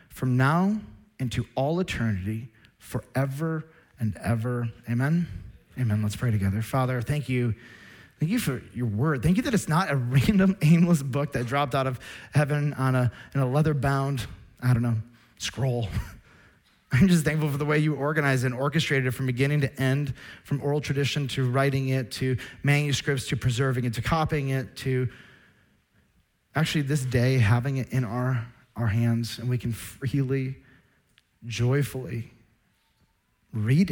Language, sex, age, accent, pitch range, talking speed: English, male, 30-49, American, 115-145 Hz, 155 wpm